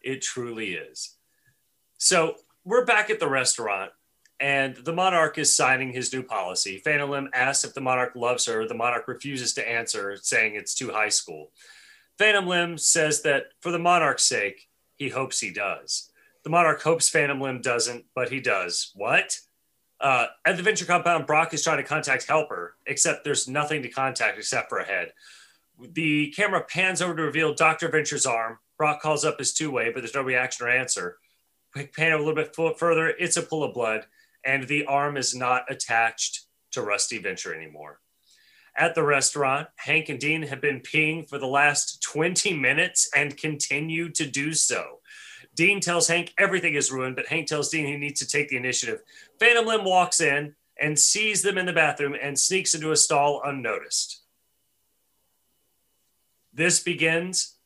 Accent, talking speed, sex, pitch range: American, 180 wpm, male, 135-170 Hz